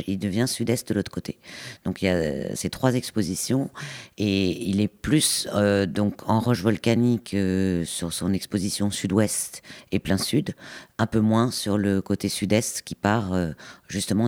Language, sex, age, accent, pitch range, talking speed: French, female, 50-69, French, 100-120 Hz, 170 wpm